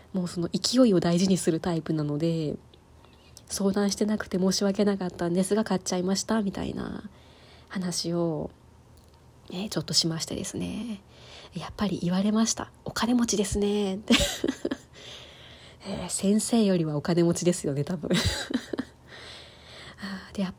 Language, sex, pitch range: Japanese, female, 170-210 Hz